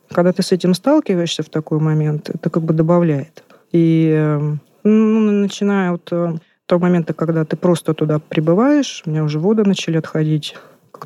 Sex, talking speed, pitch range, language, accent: female, 165 wpm, 150-180 Hz, Russian, native